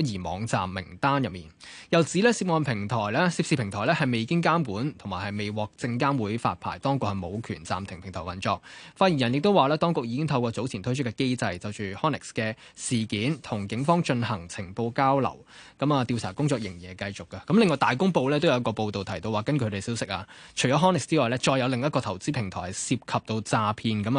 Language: Chinese